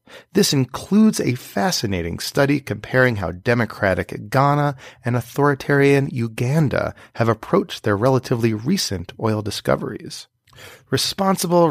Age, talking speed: 30-49, 100 wpm